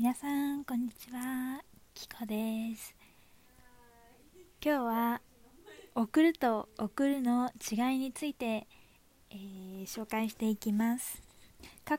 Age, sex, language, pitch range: 20-39, female, Japanese, 215-265 Hz